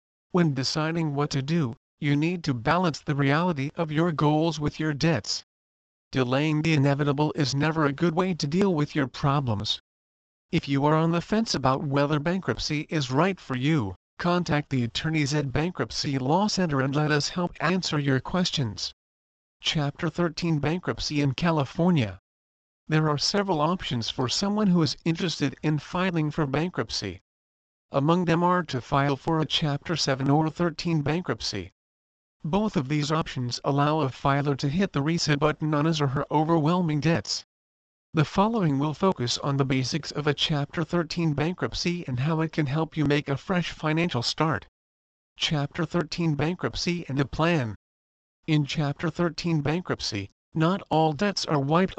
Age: 50-69